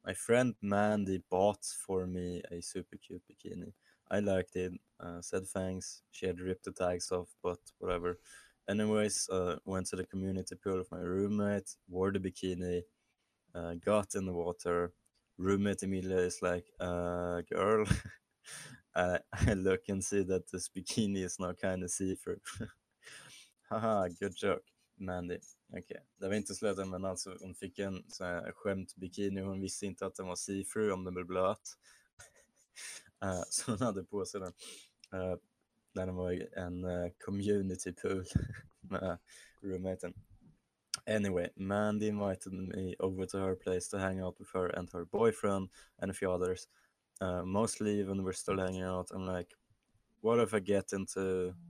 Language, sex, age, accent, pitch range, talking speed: Swedish, male, 20-39, Norwegian, 90-100 Hz, 160 wpm